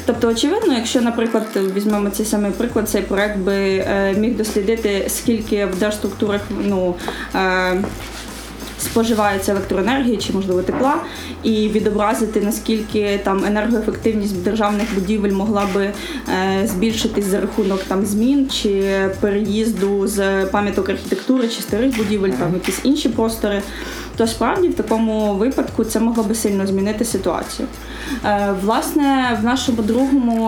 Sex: female